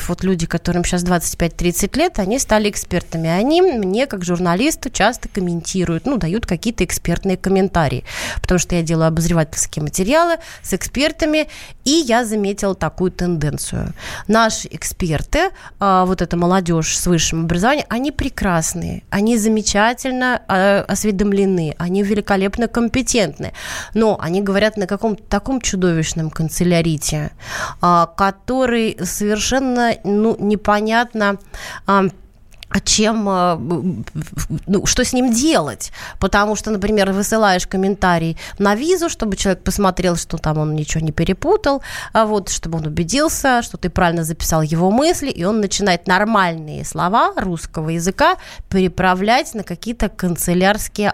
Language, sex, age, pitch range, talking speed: Russian, female, 30-49, 175-220 Hz, 120 wpm